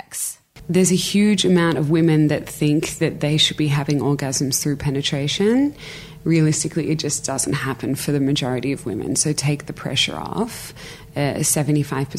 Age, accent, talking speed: 20-39, Australian, 160 wpm